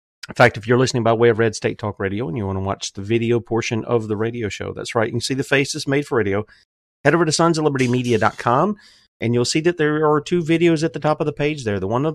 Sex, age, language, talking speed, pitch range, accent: male, 30-49, English, 275 wpm, 105-130 Hz, American